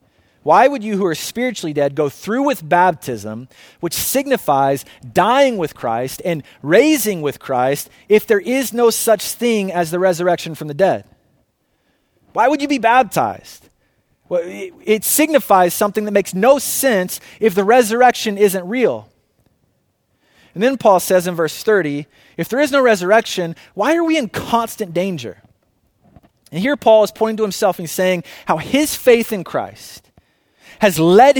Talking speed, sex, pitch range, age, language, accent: 160 wpm, male, 160-230 Hz, 30-49, English, American